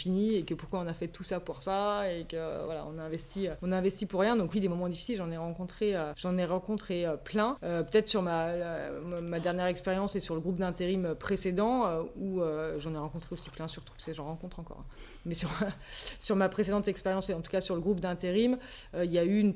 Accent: French